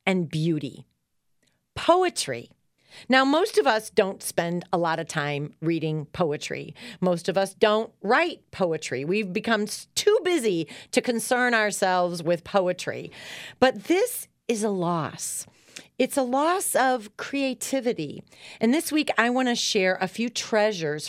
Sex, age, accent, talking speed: female, 40-59, American, 140 wpm